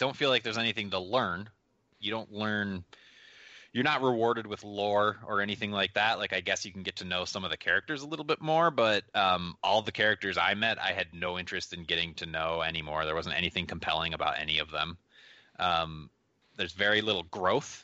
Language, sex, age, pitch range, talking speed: English, male, 20-39, 90-115 Hz, 215 wpm